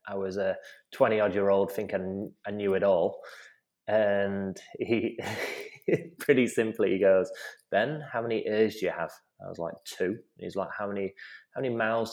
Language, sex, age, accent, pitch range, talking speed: English, male, 20-39, British, 100-120 Hz, 185 wpm